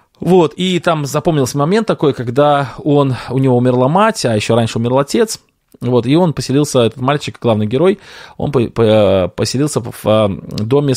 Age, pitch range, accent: 20-39, 115-150 Hz, native